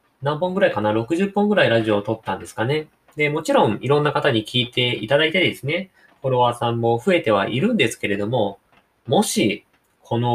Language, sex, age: Japanese, male, 20-39